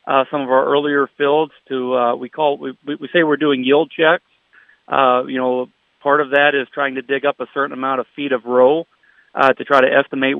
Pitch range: 125-140 Hz